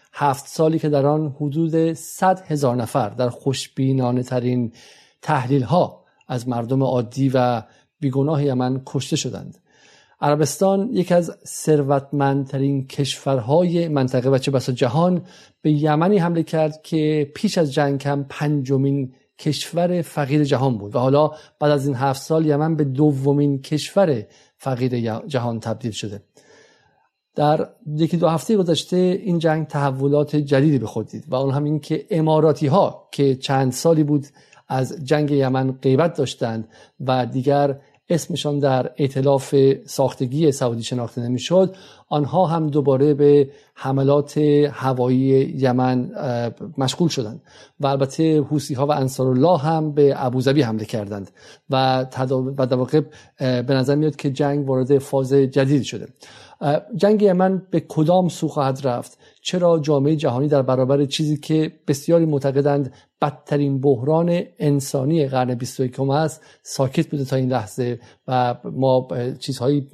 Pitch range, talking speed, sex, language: 130-155 Hz, 135 wpm, male, Persian